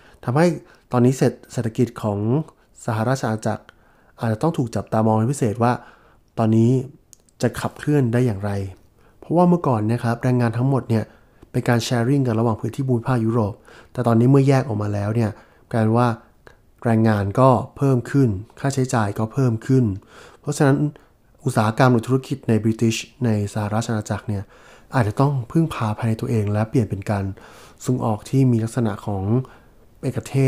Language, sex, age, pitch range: English, male, 20-39, 105-125 Hz